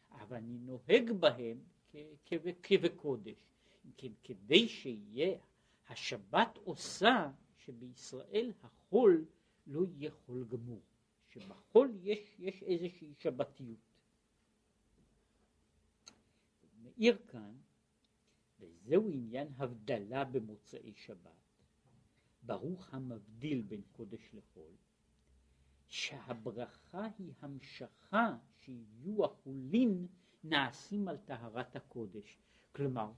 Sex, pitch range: male, 115-180 Hz